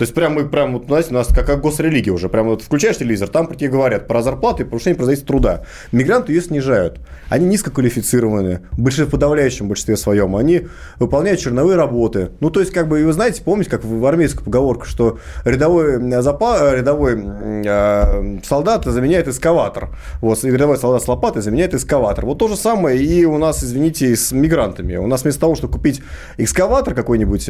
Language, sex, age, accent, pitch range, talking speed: Russian, male, 30-49, native, 110-155 Hz, 190 wpm